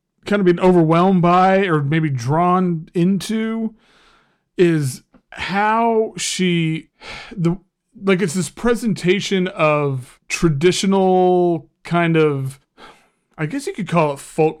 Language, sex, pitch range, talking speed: English, male, 160-200 Hz, 115 wpm